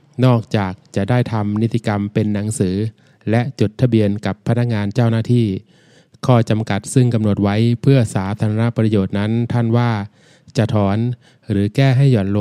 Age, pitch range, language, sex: 20-39, 105-125 Hz, Thai, male